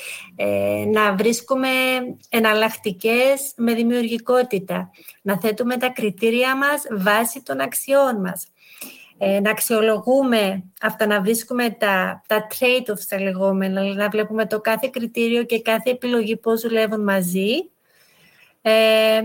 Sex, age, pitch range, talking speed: female, 30-49, 215-255 Hz, 110 wpm